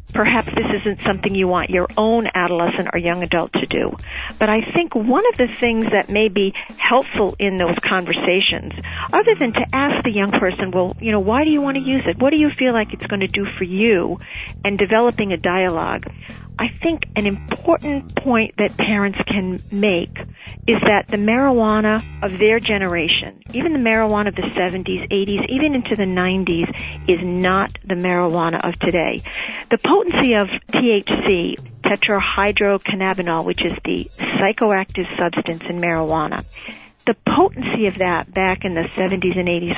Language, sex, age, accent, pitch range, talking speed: English, female, 50-69, American, 185-235 Hz, 175 wpm